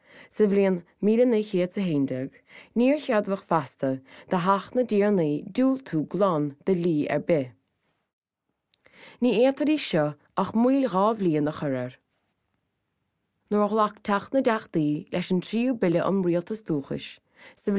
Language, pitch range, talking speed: English, 145-210 Hz, 90 wpm